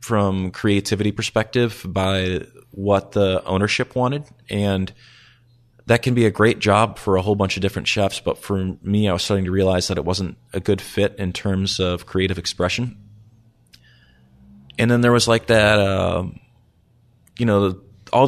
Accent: American